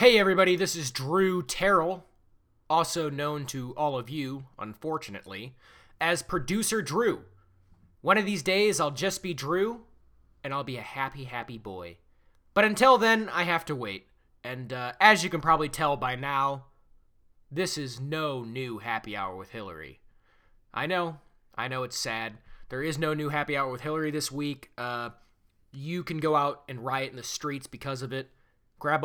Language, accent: English, American